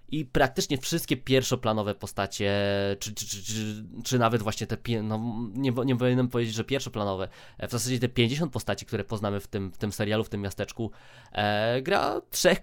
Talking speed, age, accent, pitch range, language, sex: 180 wpm, 20-39, native, 110-130 Hz, Polish, male